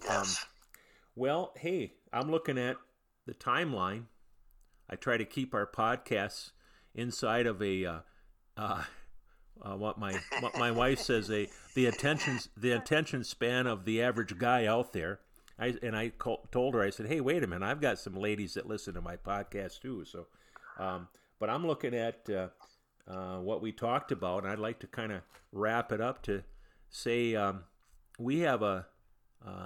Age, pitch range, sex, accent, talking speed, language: 50-69, 95-120 Hz, male, American, 180 wpm, English